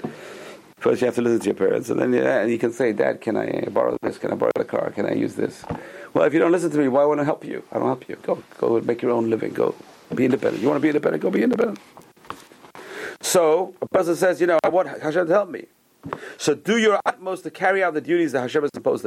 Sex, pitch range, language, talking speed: male, 125-195 Hz, English, 275 wpm